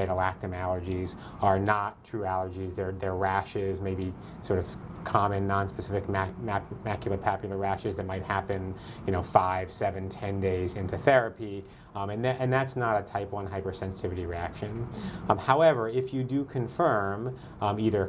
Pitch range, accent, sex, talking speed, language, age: 95-115 Hz, American, male, 160 wpm, English, 30-49